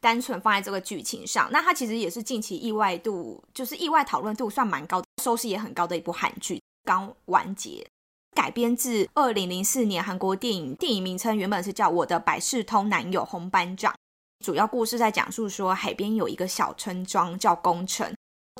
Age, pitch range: 20-39, 185-235 Hz